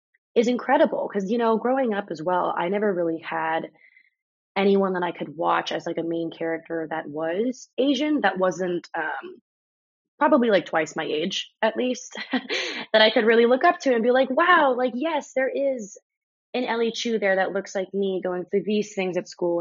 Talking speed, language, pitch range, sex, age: 200 wpm, English, 170-230 Hz, female, 20-39